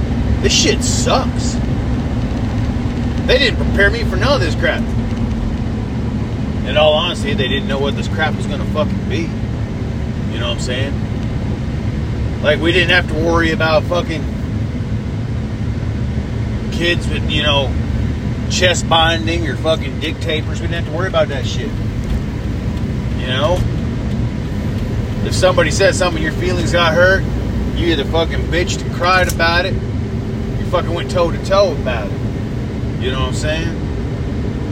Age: 30-49